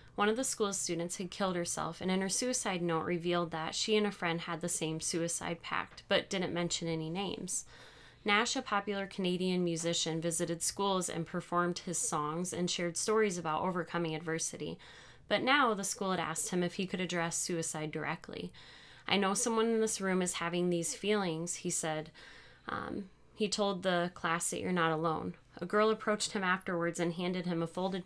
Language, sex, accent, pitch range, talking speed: English, female, American, 170-200 Hz, 190 wpm